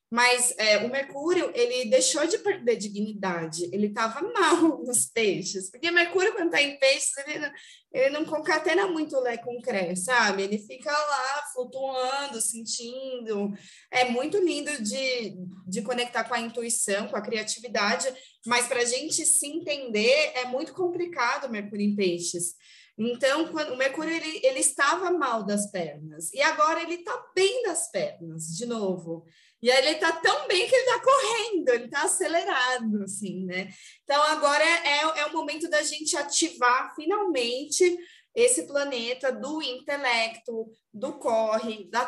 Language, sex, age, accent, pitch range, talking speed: Portuguese, female, 20-39, Brazilian, 225-305 Hz, 155 wpm